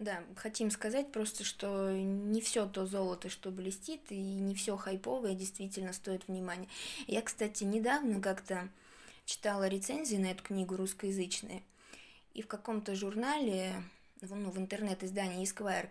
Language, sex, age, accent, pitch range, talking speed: Russian, female, 20-39, native, 190-220 Hz, 135 wpm